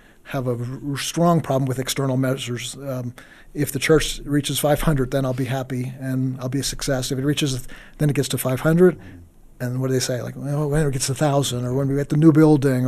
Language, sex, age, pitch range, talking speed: English, male, 50-69, 130-155 Hz, 240 wpm